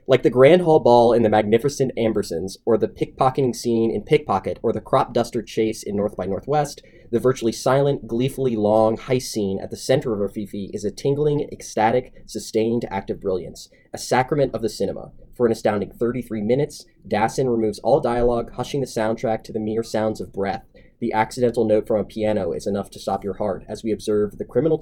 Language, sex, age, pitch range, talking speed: English, male, 20-39, 110-130 Hz, 200 wpm